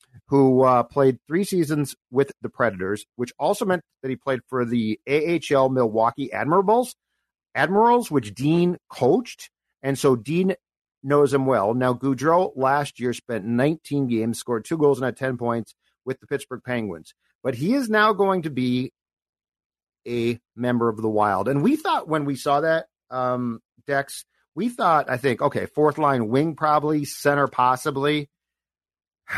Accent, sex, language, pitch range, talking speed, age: American, male, English, 120-155 Hz, 160 wpm, 50-69